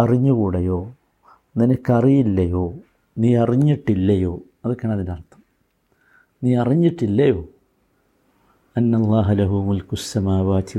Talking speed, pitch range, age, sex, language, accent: 60 wpm, 100-135 Hz, 50-69, male, Malayalam, native